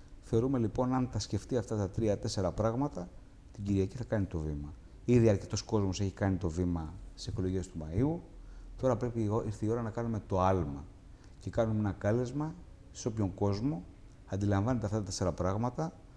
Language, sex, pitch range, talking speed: Greek, male, 95-115 Hz, 180 wpm